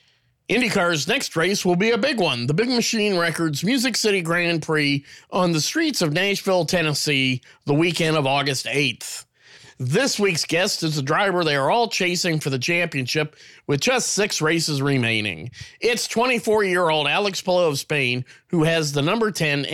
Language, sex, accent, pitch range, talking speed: English, male, American, 145-195 Hz, 170 wpm